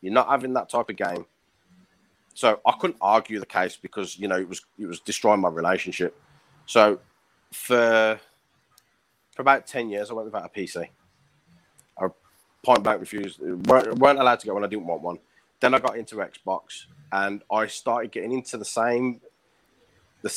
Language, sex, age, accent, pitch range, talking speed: English, male, 30-49, British, 100-125 Hz, 180 wpm